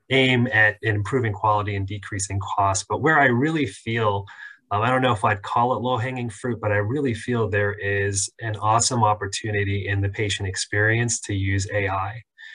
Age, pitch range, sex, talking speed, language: 30-49, 100-115 Hz, male, 180 wpm, English